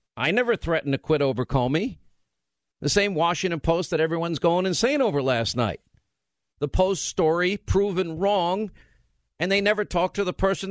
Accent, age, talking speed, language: American, 50-69, 170 wpm, English